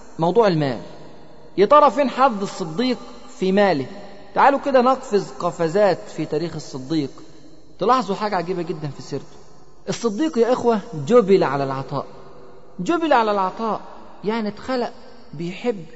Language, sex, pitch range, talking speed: Arabic, male, 155-215 Hz, 130 wpm